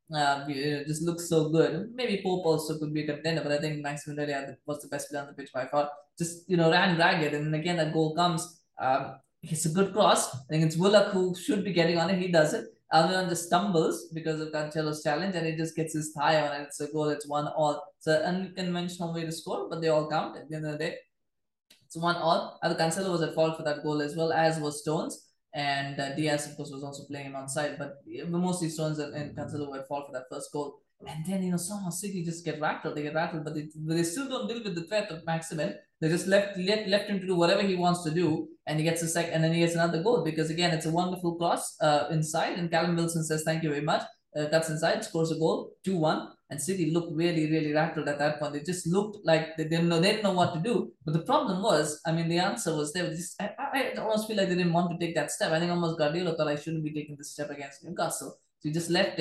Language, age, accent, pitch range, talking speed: English, 20-39, Indian, 150-175 Hz, 265 wpm